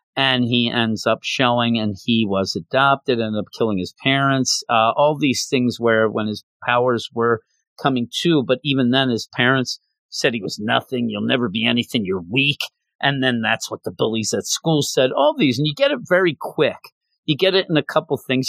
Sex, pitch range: male, 120-160 Hz